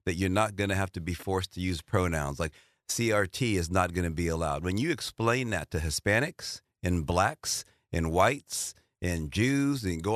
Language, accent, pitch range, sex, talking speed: English, American, 90-110 Hz, male, 200 wpm